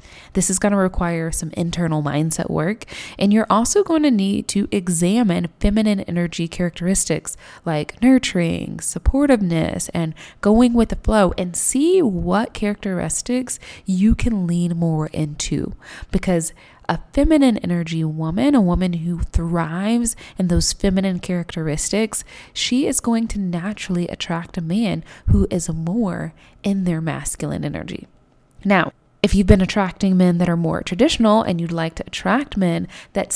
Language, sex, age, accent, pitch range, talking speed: English, female, 20-39, American, 170-215 Hz, 145 wpm